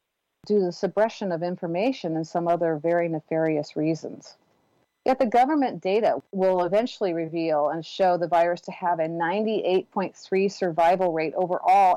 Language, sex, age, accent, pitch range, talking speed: English, female, 40-59, American, 170-200 Hz, 150 wpm